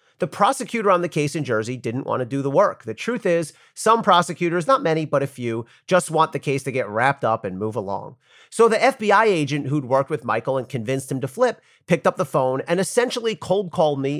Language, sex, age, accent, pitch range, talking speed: English, male, 40-59, American, 130-175 Hz, 235 wpm